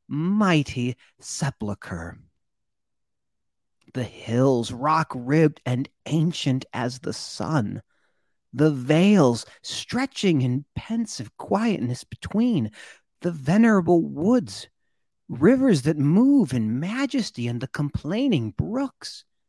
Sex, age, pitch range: male, 40-59, 125-185 Hz